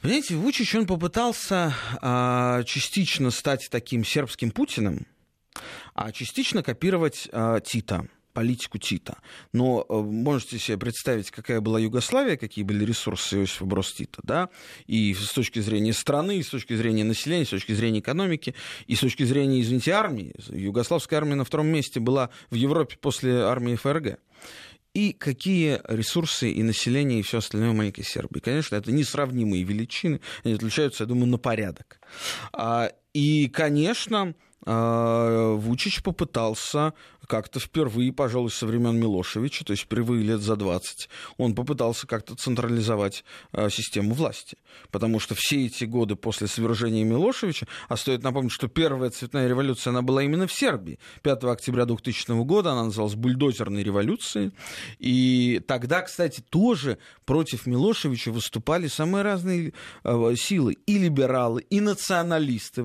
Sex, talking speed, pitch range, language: male, 140 wpm, 115-150 Hz, Russian